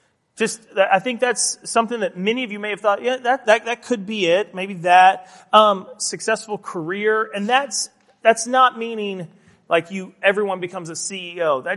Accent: American